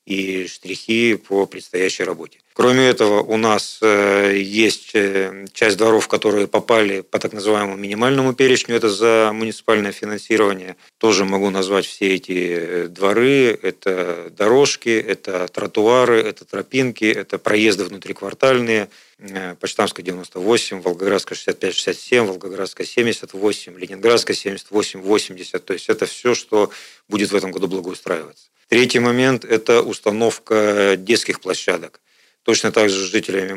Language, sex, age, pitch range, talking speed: Russian, male, 40-59, 95-115 Hz, 120 wpm